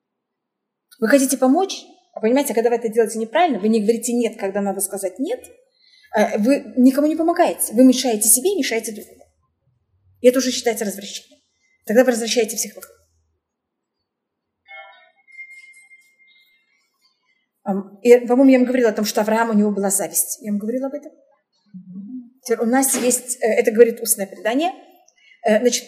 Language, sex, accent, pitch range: Russian, female, native, 220-285 Hz